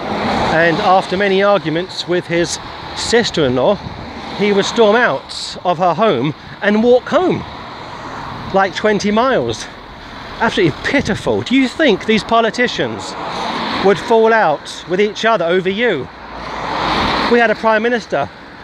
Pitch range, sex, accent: 175-220 Hz, male, British